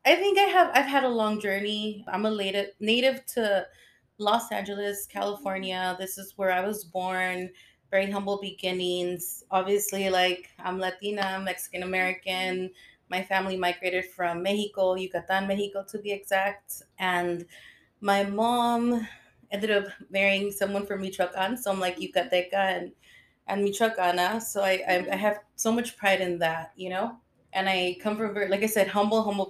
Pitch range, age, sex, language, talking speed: 185-205 Hz, 30-49, female, English, 160 wpm